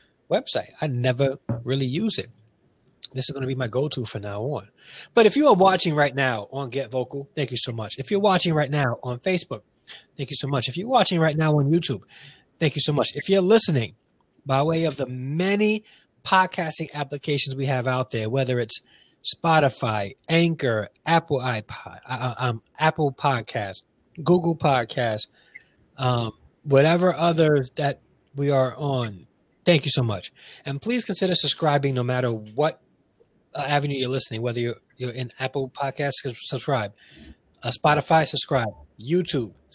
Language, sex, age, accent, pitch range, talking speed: English, male, 20-39, American, 125-160 Hz, 170 wpm